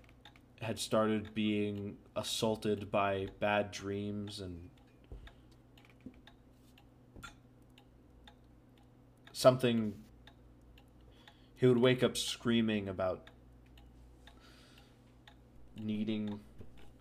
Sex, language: male, English